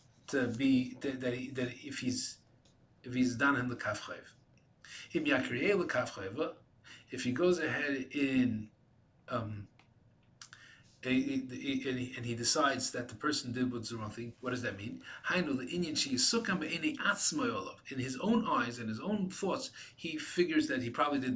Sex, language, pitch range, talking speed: male, English, 120-175 Hz, 135 wpm